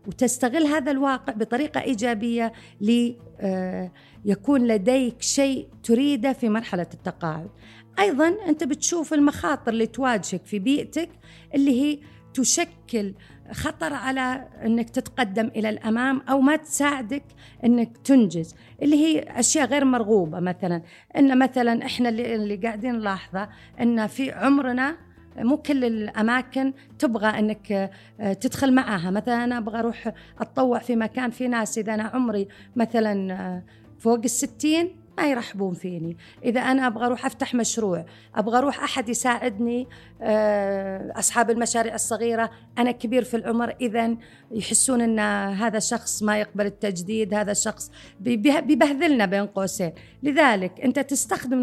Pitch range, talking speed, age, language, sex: 210-265 Hz, 125 wpm, 40-59, Arabic, female